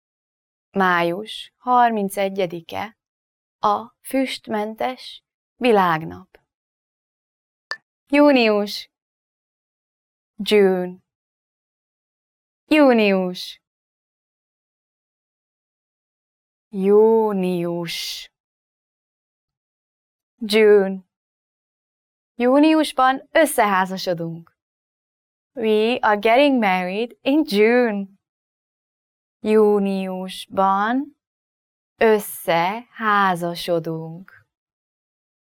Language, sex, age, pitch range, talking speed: English, female, 20-39, 180-250 Hz, 35 wpm